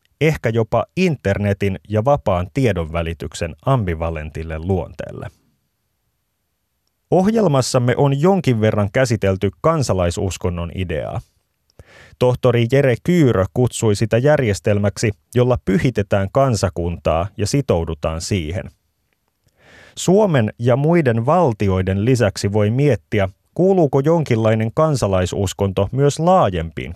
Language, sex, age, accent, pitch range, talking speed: Finnish, male, 30-49, native, 95-135 Hz, 85 wpm